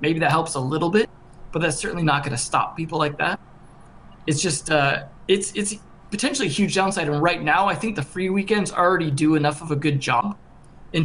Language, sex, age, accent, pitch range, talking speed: English, male, 20-39, American, 140-185 Hz, 225 wpm